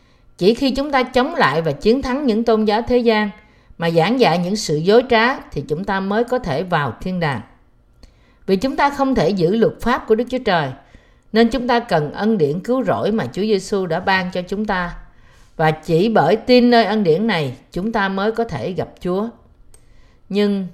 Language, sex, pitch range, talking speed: Vietnamese, female, 165-230 Hz, 215 wpm